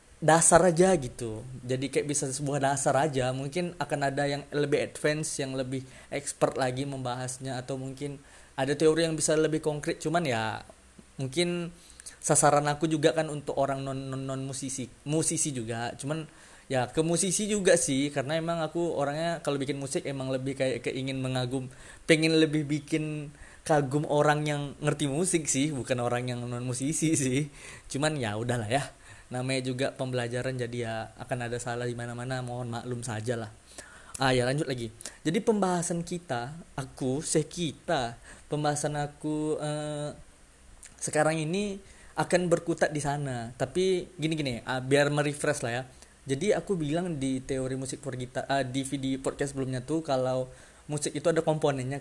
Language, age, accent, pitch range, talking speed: Indonesian, 20-39, native, 130-155 Hz, 160 wpm